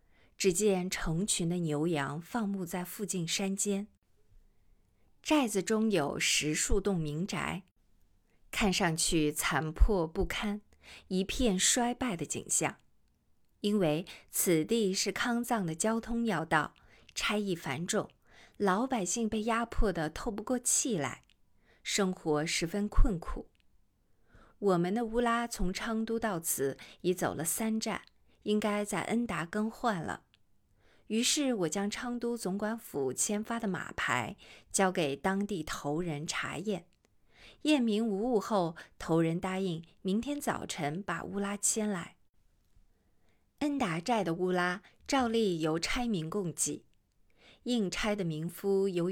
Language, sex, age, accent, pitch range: Chinese, female, 50-69, native, 165-220 Hz